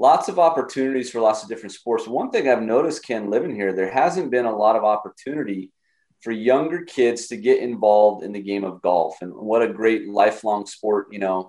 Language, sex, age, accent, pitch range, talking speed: English, male, 30-49, American, 105-130 Hz, 215 wpm